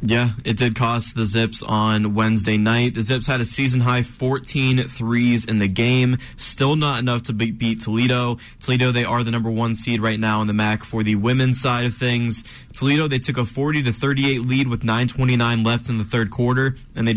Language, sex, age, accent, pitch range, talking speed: English, male, 20-39, American, 115-135 Hz, 215 wpm